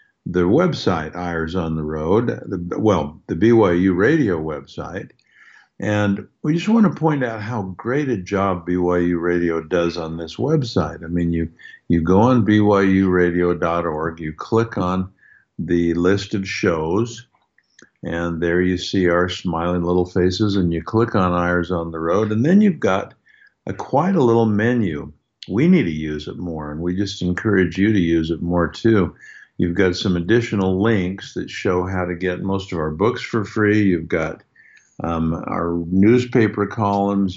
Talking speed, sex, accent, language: 170 wpm, male, American, English